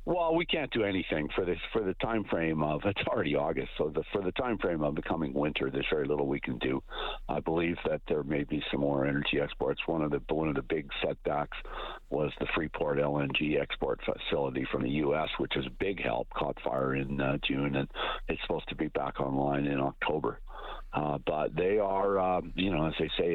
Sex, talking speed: male, 220 wpm